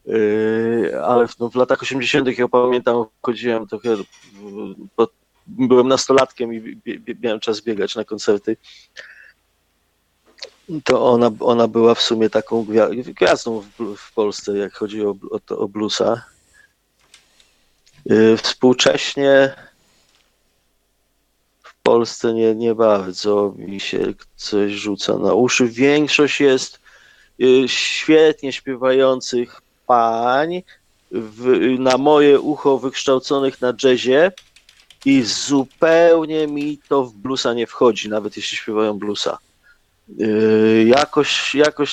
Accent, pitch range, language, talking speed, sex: native, 115-140 Hz, Polish, 110 wpm, male